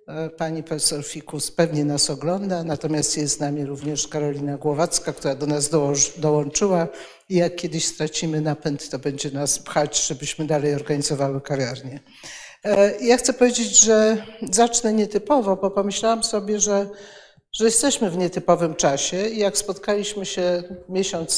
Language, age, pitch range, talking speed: Polish, 60-79, 155-190 Hz, 140 wpm